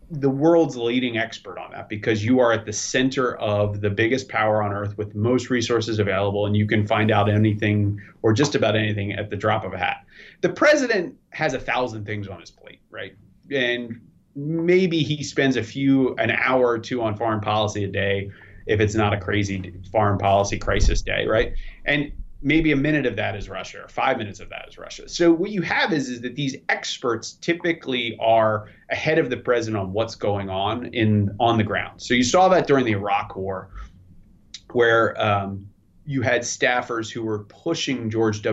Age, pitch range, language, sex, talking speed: 30-49, 105-125 Hz, English, male, 200 wpm